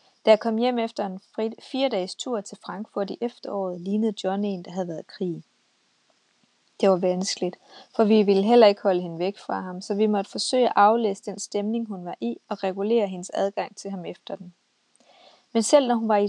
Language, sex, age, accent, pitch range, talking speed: Danish, female, 30-49, native, 190-225 Hz, 215 wpm